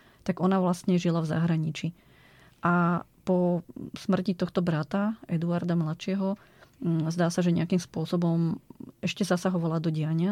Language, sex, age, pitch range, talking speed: Slovak, female, 20-39, 165-180 Hz, 130 wpm